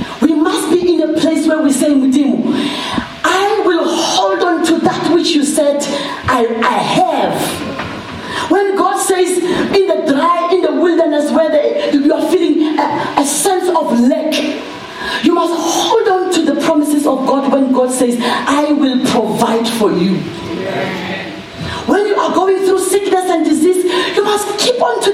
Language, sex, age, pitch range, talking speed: English, female, 40-59, 250-345 Hz, 165 wpm